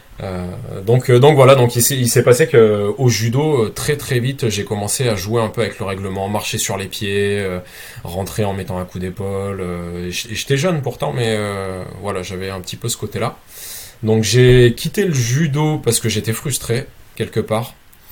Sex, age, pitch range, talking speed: male, 20-39, 95-115 Hz, 200 wpm